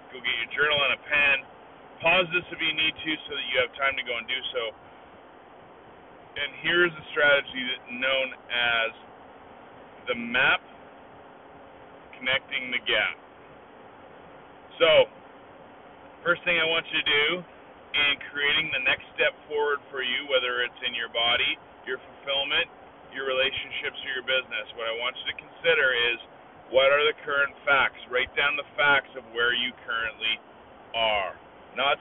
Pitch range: 125-160 Hz